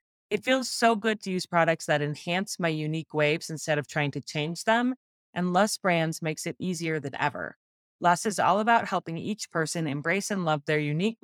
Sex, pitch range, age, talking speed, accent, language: female, 155-190 Hz, 30-49, 205 wpm, American, English